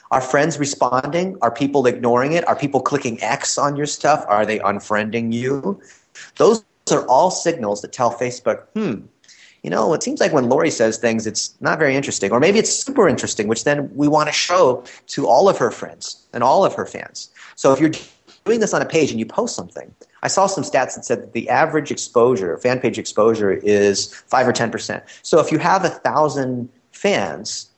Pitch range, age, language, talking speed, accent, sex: 115-145 Hz, 30-49, English, 205 wpm, American, male